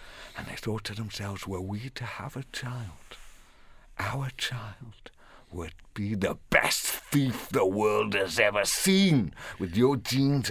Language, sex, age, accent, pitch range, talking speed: English, male, 60-79, British, 95-125 Hz, 150 wpm